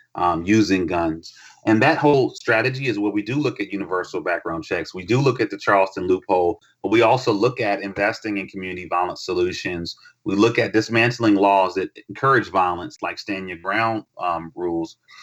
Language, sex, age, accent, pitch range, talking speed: English, male, 30-49, American, 100-145 Hz, 185 wpm